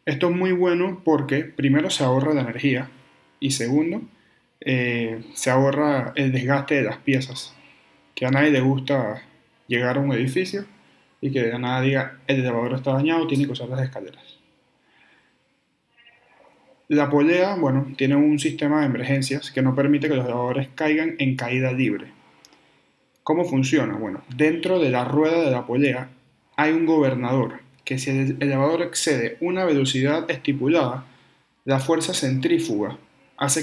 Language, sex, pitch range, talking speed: Spanish, male, 130-155 Hz, 155 wpm